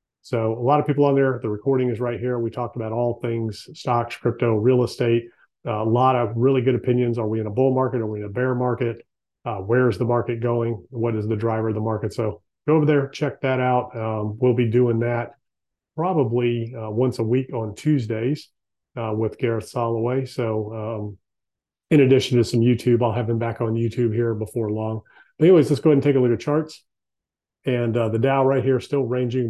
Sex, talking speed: male, 220 wpm